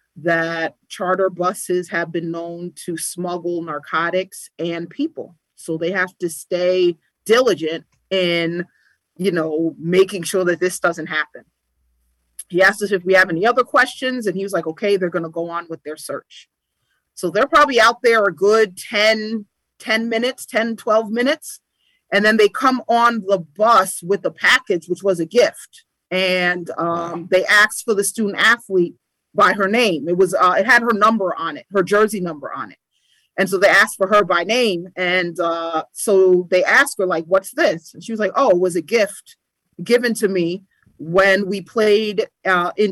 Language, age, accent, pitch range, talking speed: English, 40-59, American, 175-215 Hz, 185 wpm